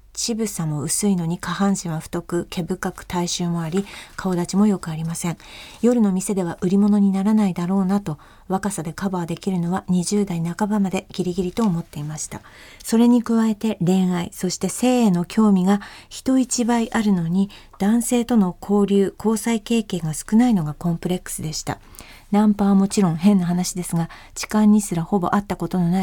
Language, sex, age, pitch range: Japanese, female, 40-59, 175-210 Hz